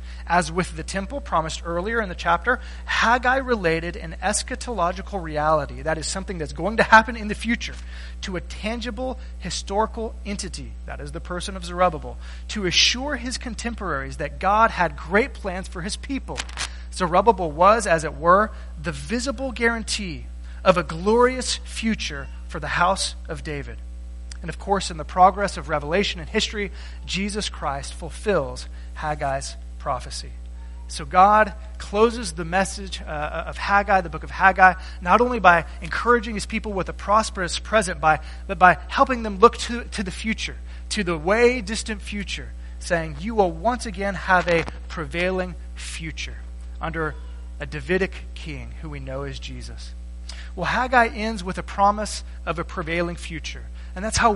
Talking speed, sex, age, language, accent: 160 wpm, male, 30-49, English, American